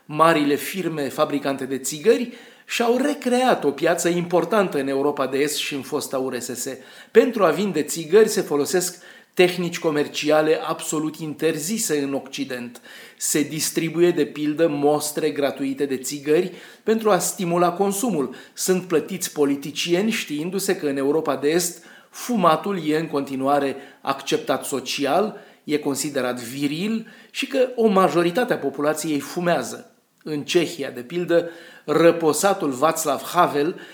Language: Romanian